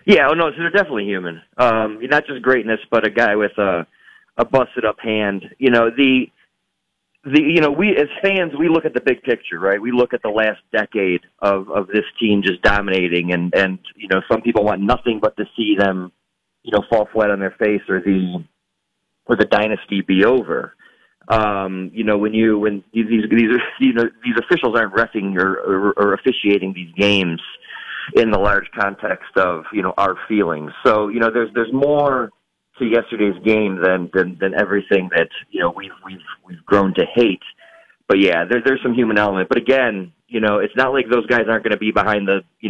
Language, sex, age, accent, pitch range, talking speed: English, male, 30-49, American, 95-120 Hz, 210 wpm